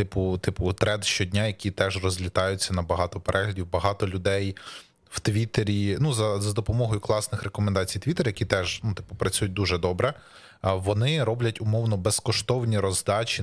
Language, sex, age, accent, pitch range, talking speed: Ukrainian, male, 20-39, native, 100-120 Hz, 145 wpm